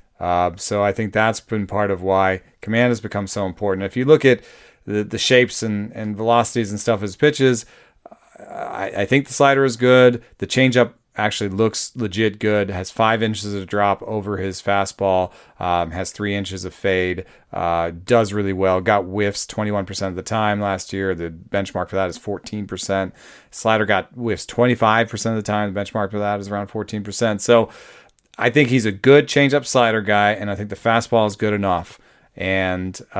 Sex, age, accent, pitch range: male, 30-49, American, 95-115 Hz